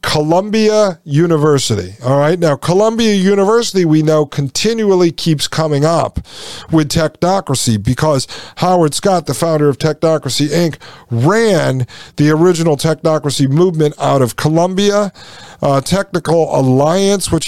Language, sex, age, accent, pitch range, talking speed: English, male, 50-69, American, 140-175 Hz, 120 wpm